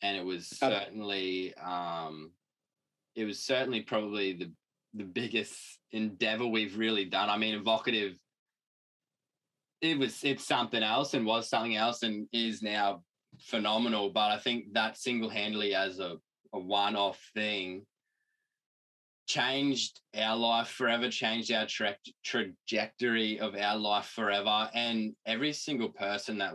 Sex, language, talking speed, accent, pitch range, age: male, English, 140 wpm, Australian, 100-130 Hz, 20-39